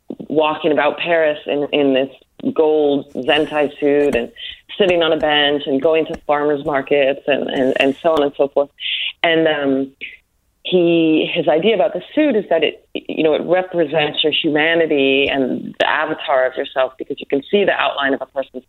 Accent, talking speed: American, 185 wpm